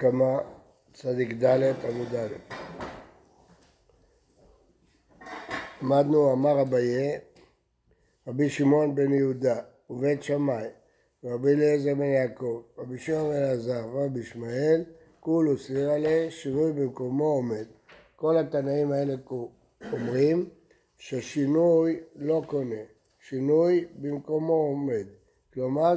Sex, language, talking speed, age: male, Hebrew, 90 wpm, 60-79